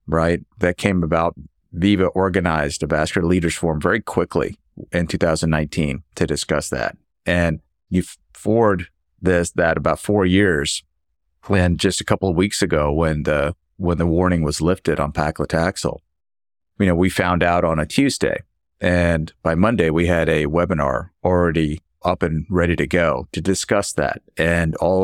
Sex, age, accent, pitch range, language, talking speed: male, 50-69, American, 80-95 Hz, English, 160 wpm